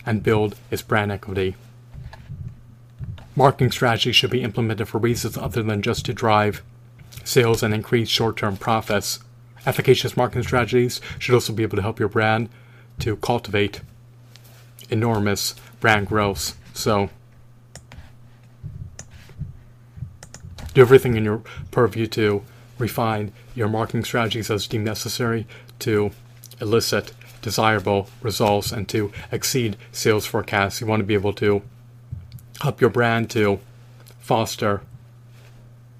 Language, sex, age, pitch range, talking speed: English, male, 40-59, 110-120 Hz, 120 wpm